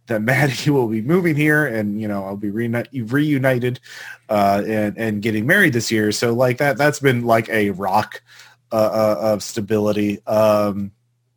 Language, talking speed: English, 170 wpm